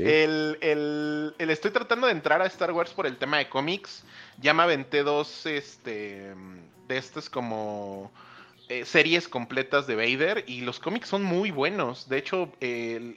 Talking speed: 175 wpm